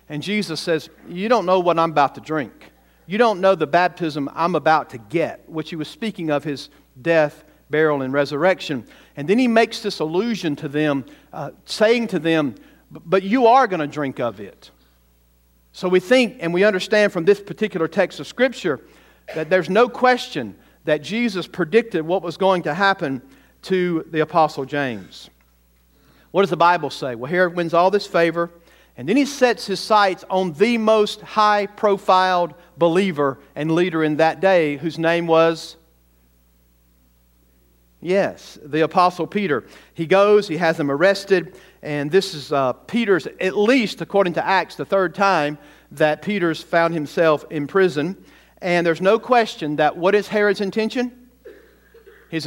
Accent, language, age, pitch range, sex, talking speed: American, English, 50-69, 150-200 Hz, male, 170 wpm